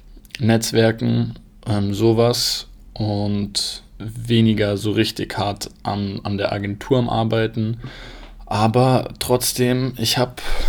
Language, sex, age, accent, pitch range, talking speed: German, male, 20-39, German, 105-115 Hz, 100 wpm